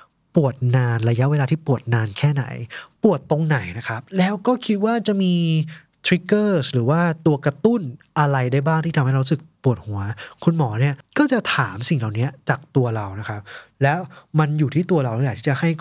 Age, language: 20-39, Thai